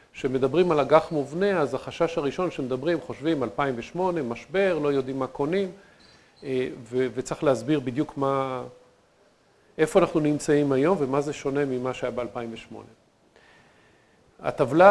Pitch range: 130-160 Hz